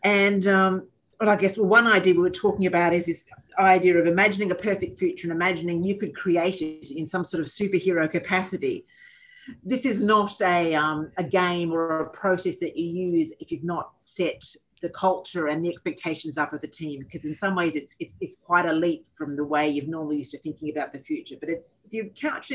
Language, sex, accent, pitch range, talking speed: English, female, Australian, 160-205 Hz, 225 wpm